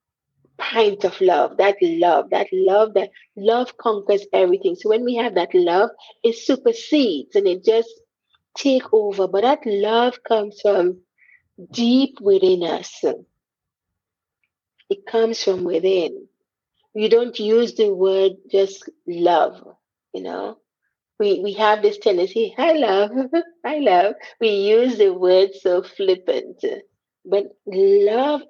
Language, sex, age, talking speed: English, female, 30-49, 130 wpm